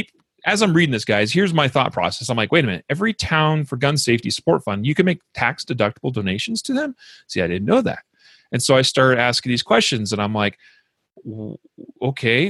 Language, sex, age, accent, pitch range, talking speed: English, male, 40-59, American, 120-170 Hz, 210 wpm